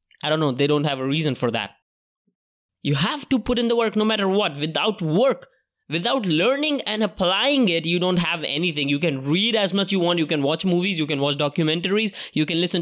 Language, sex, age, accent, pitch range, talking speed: English, male, 20-39, Indian, 145-180 Hz, 230 wpm